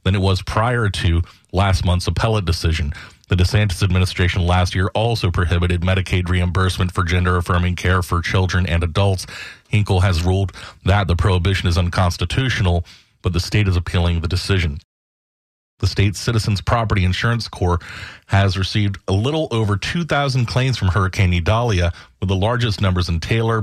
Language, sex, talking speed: English, male, 155 wpm